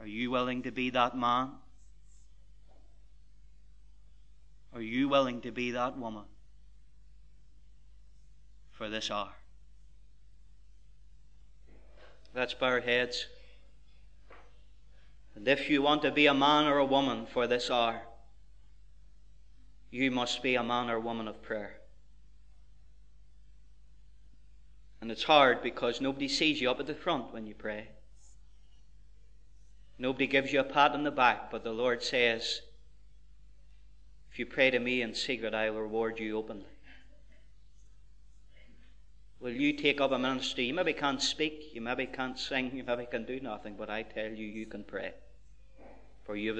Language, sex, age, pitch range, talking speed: English, male, 20-39, 75-125 Hz, 145 wpm